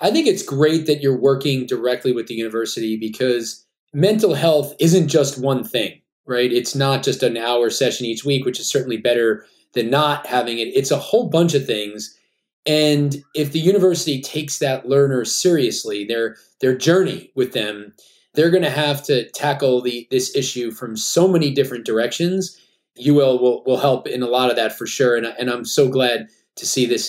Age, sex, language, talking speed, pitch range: 20-39, male, English, 195 wpm, 125-175 Hz